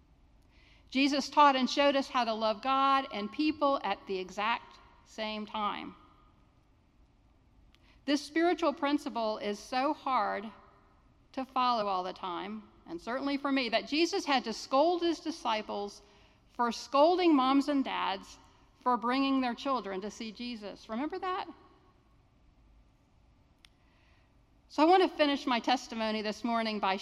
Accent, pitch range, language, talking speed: American, 200-270 Hz, English, 140 wpm